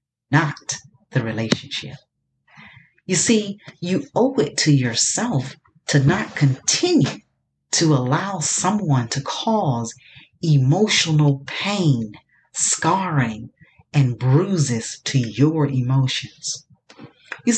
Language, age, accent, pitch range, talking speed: English, 40-59, American, 130-180 Hz, 90 wpm